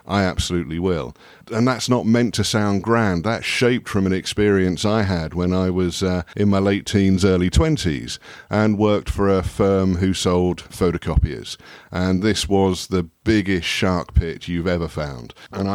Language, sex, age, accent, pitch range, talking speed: English, male, 50-69, British, 85-100 Hz, 175 wpm